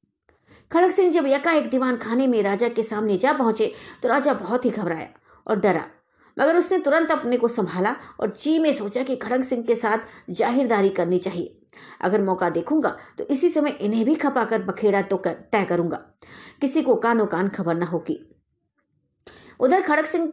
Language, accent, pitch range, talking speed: Hindi, native, 210-305 Hz, 185 wpm